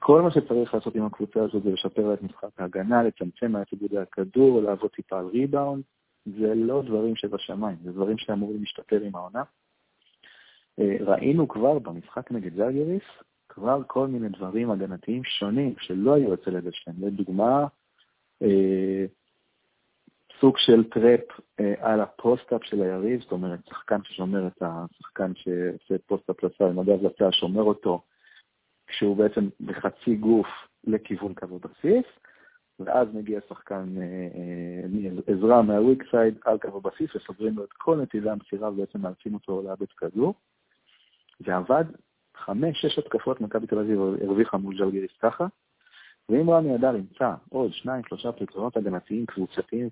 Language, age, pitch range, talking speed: Hebrew, 50-69, 95-125 Hz, 140 wpm